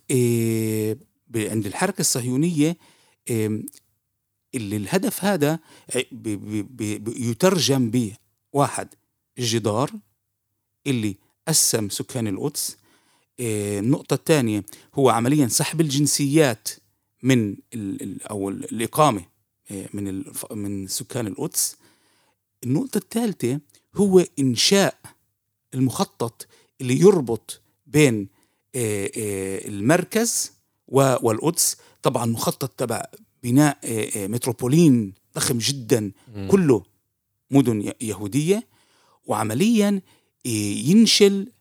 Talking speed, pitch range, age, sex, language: 85 wpm, 105-145 Hz, 50-69, male, Arabic